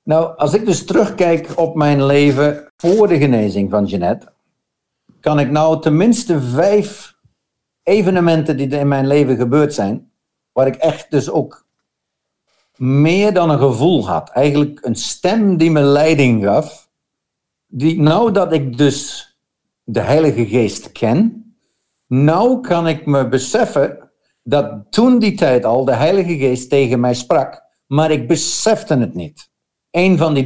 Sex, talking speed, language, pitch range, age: male, 150 wpm, Dutch, 125-165 Hz, 60-79